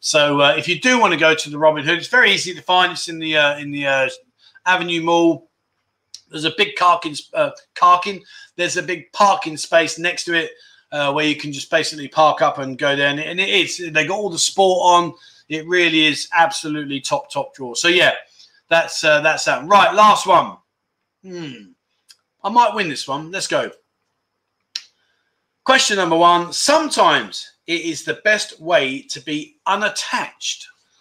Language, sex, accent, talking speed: English, male, British, 190 wpm